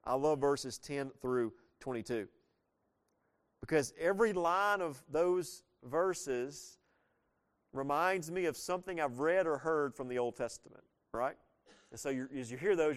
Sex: male